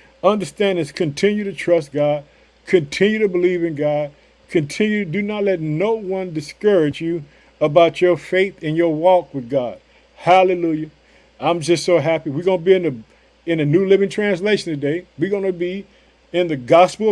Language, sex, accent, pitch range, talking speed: English, male, American, 165-205 Hz, 170 wpm